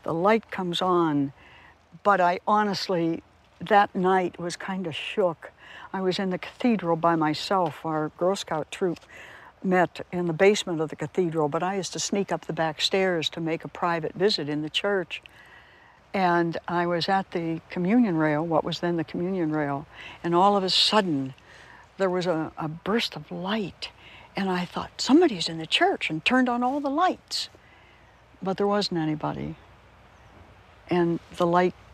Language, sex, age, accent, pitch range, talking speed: English, female, 60-79, American, 155-195 Hz, 175 wpm